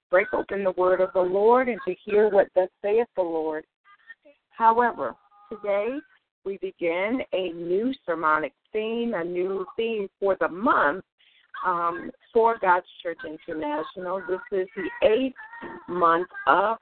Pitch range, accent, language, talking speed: 180-230 Hz, American, English, 145 wpm